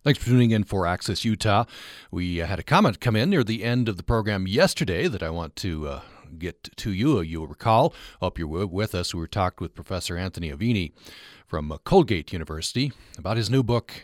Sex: male